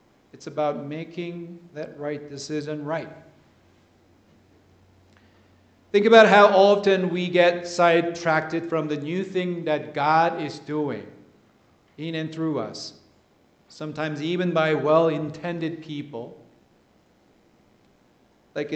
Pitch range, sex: 145-175 Hz, male